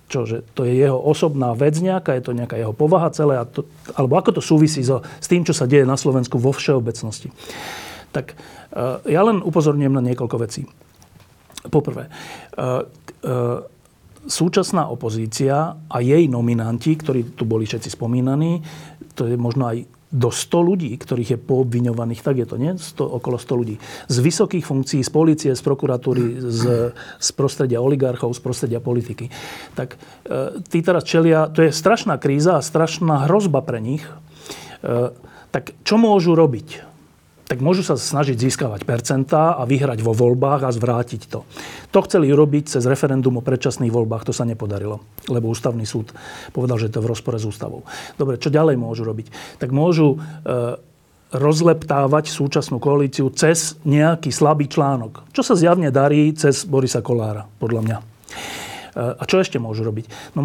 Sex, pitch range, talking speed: male, 120-155 Hz, 160 wpm